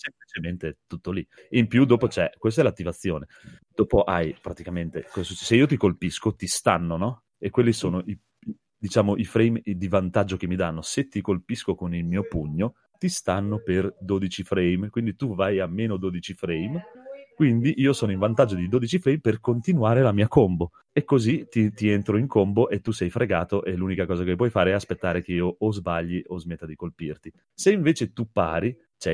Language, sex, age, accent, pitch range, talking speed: Italian, male, 30-49, native, 90-120 Hz, 200 wpm